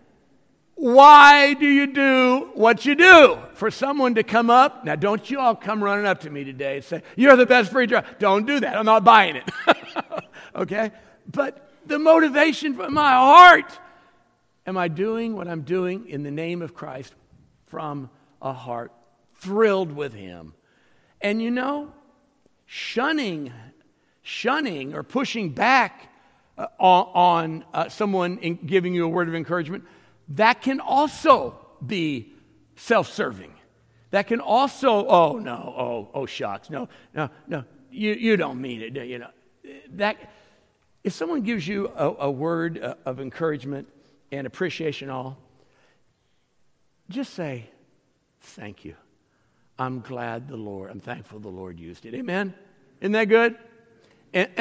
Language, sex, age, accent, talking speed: English, male, 60-79, American, 145 wpm